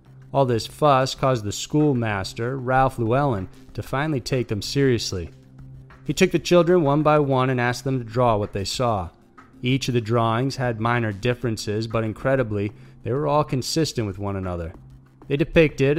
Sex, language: male, English